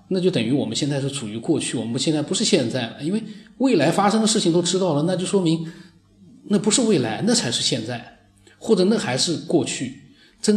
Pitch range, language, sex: 120-165 Hz, Chinese, male